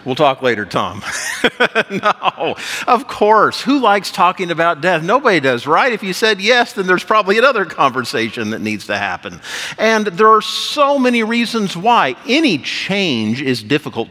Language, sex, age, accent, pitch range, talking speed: English, male, 50-69, American, 135-200 Hz, 165 wpm